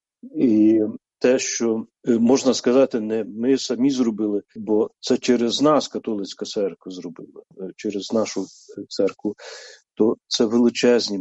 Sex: male